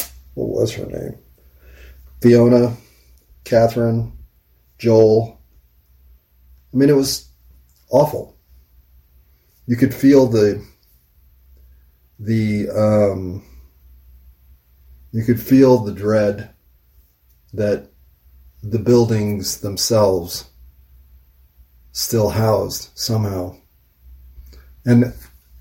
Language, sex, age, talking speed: English, male, 30-49, 75 wpm